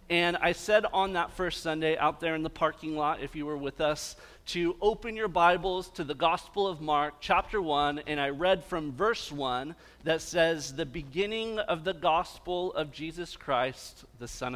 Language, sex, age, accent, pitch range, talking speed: English, male, 40-59, American, 135-175 Hz, 195 wpm